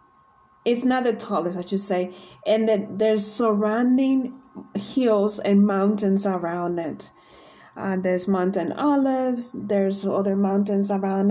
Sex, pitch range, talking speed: female, 195-220 Hz, 125 wpm